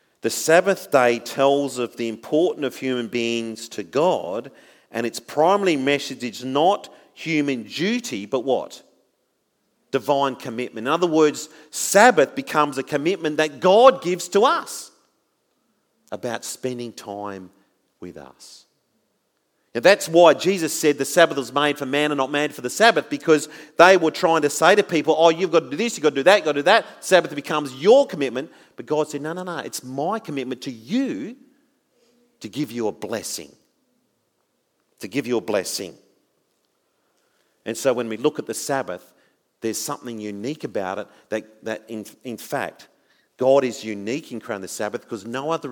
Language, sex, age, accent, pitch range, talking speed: English, male, 40-59, Australian, 125-165 Hz, 175 wpm